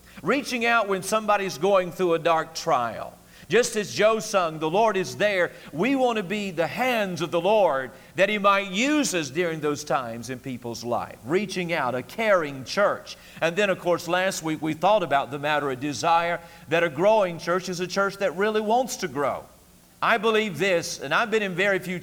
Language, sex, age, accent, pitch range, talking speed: English, male, 50-69, American, 150-195 Hz, 205 wpm